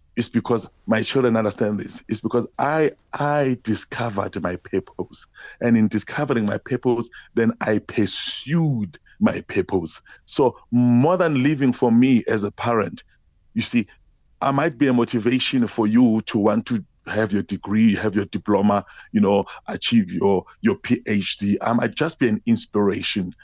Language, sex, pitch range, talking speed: English, male, 105-125 Hz, 160 wpm